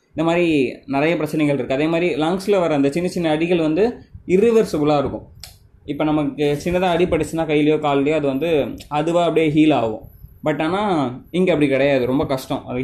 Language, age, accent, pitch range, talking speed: Tamil, 20-39, native, 130-170 Hz, 170 wpm